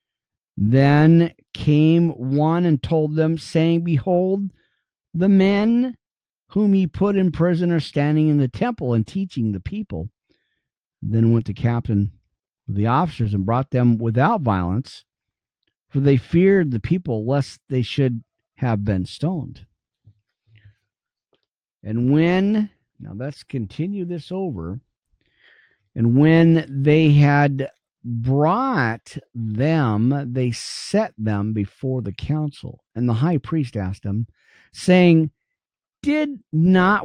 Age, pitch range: 50-69, 115-170 Hz